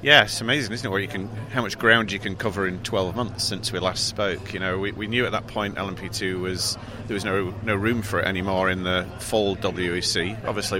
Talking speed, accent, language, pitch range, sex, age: 245 wpm, British, English, 95-110 Hz, male, 40-59